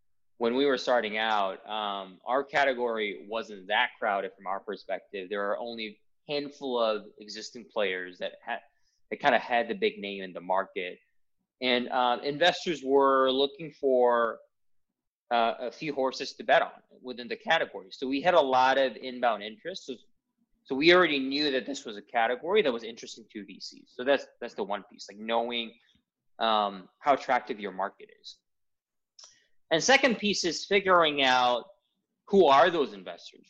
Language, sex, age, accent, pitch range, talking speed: English, male, 20-39, American, 110-160 Hz, 175 wpm